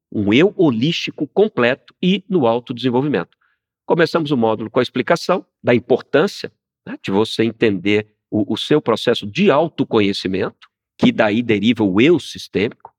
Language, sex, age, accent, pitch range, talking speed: Portuguese, male, 50-69, Brazilian, 100-135 Hz, 145 wpm